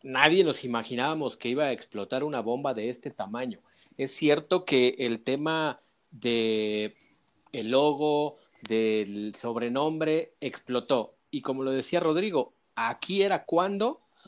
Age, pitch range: 40-59, 130-180 Hz